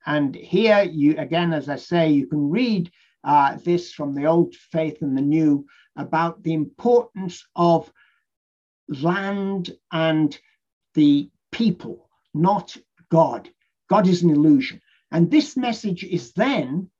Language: English